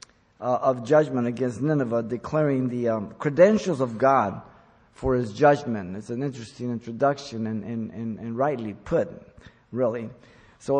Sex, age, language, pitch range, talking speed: male, 50-69, English, 125-160 Hz, 140 wpm